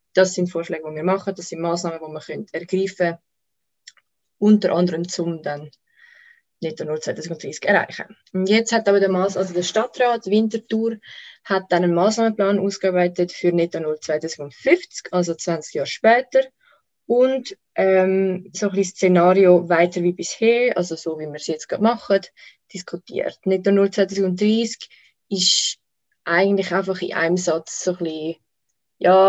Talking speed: 140 wpm